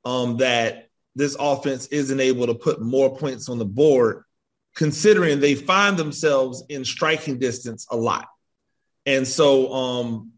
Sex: male